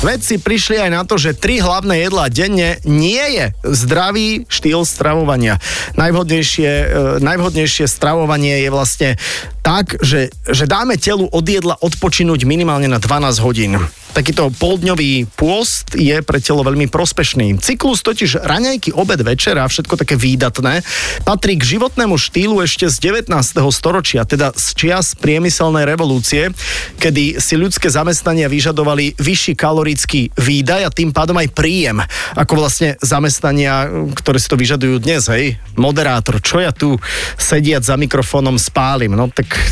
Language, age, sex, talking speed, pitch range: Slovak, 30-49, male, 140 wpm, 130-170 Hz